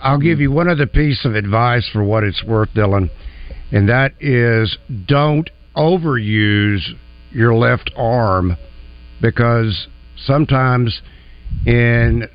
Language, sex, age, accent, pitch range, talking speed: English, male, 60-79, American, 95-150 Hz, 115 wpm